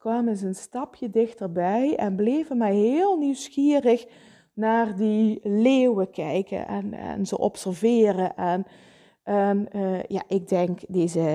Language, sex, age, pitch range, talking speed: Dutch, female, 20-39, 185-240 Hz, 115 wpm